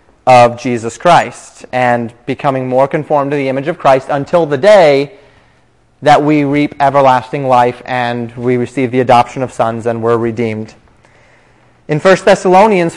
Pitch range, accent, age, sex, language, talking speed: 125-150 Hz, American, 30-49, male, English, 155 wpm